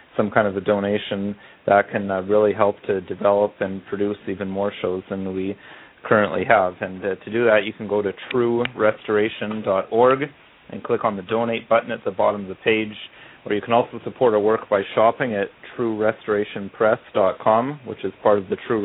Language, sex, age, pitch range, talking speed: English, male, 40-59, 100-115 Hz, 190 wpm